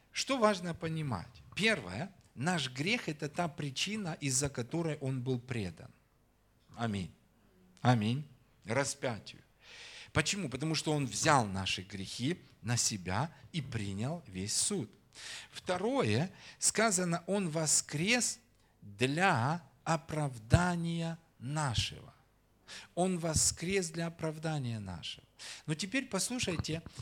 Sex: male